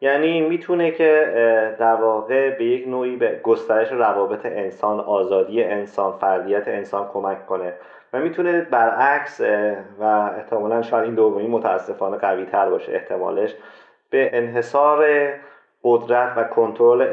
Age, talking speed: 30-49, 125 wpm